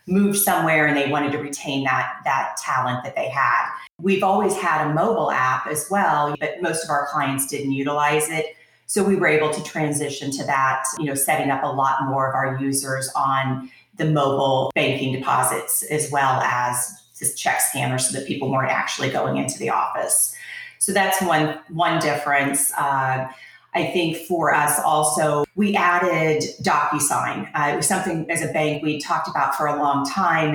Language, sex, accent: English, female, American